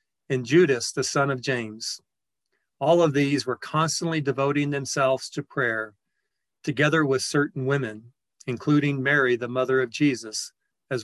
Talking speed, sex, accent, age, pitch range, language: 140 wpm, male, American, 40-59, 130-150 Hz, English